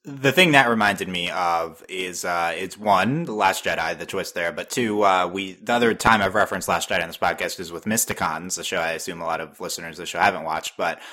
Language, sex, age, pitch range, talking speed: English, male, 20-39, 90-100 Hz, 255 wpm